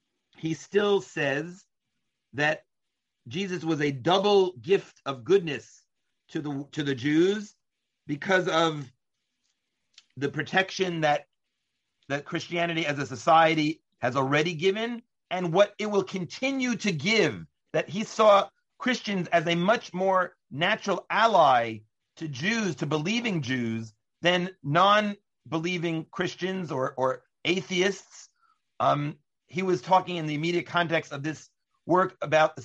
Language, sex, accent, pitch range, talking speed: English, male, American, 145-190 Hz, 130 wpm